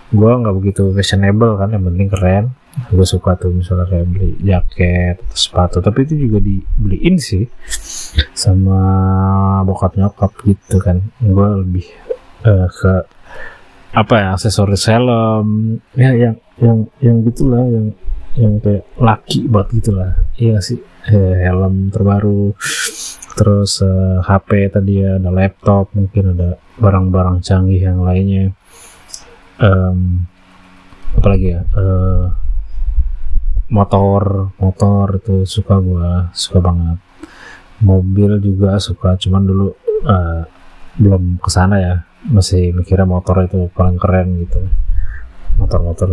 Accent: native